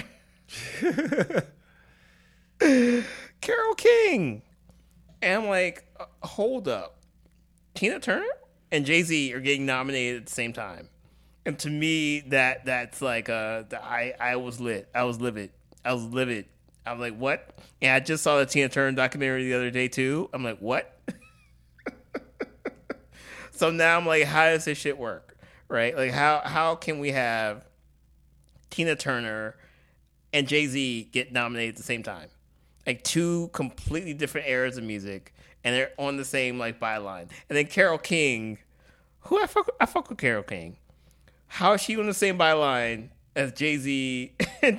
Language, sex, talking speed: English, male, 155 wpm